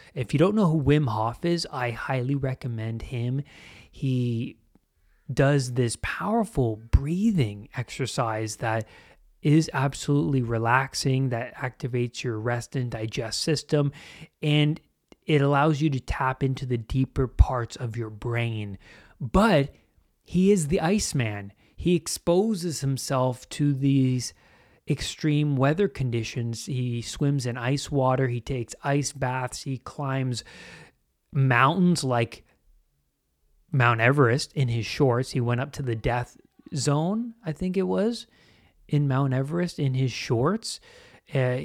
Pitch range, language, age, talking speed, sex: 120-150 Hz, English, 30-49, 130 wpm, male